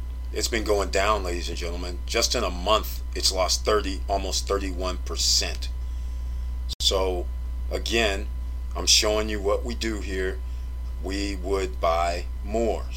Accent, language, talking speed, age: American, English, 135 wpm, 40-59